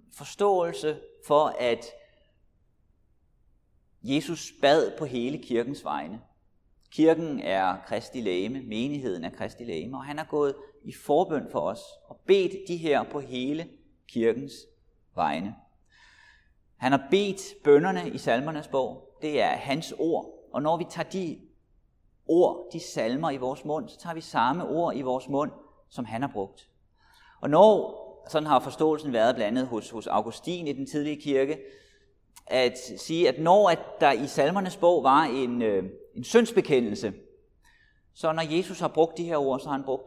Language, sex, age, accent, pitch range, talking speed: Danish, male, 30-49, native, 130-195 Hz, 155 wpm